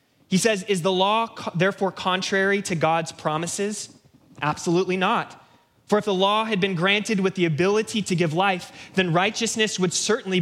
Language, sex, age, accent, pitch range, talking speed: English, male, 20-39, American, 150-195 Hz, 165 wpm